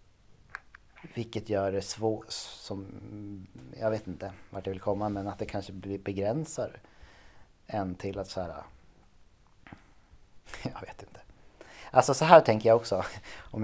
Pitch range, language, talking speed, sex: 95-115 Hz, Swedish, 140 wpm, male